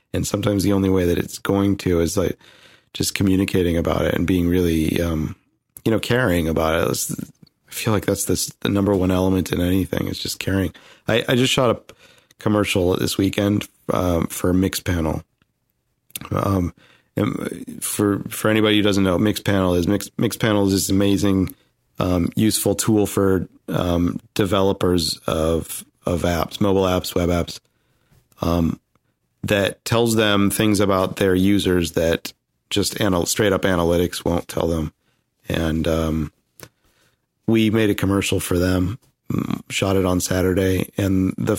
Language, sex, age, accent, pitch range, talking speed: English, male, 40-59, American, 90-105 Hz, 155 wpm